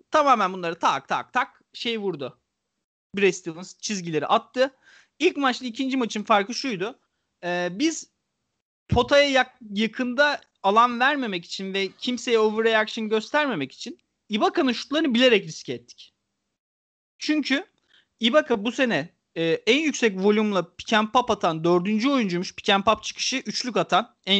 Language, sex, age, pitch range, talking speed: Turkish, male, 40-59, 195-270 Hz, 130 wpm